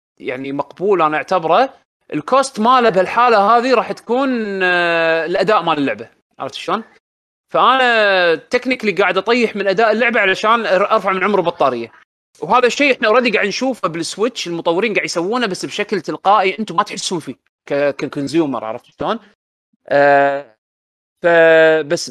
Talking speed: 135 wpm